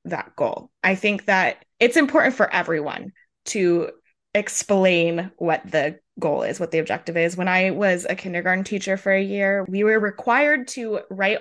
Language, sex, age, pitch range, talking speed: English, female, 20-39, 175-215 Hz, 175 wpm